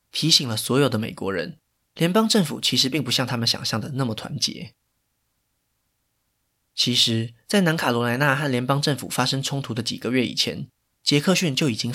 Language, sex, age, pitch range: Chinese, male, 20-39, 120-160 Hz